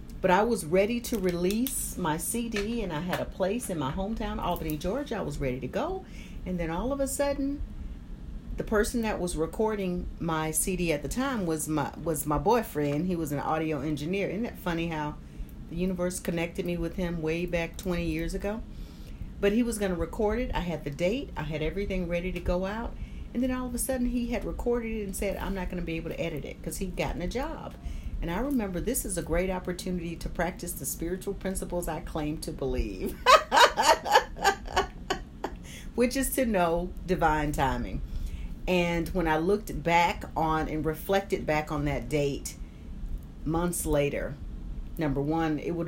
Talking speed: 195 wpm